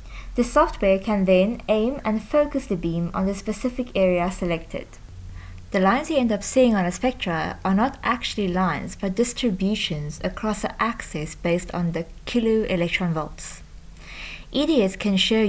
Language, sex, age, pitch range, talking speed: English, female, 20-39, 175-220 Hz, 160 wpm